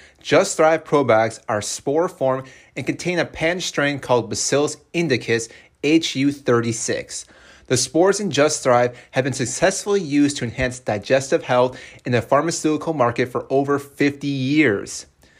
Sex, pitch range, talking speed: male, 120-150 Hz, 135 wpm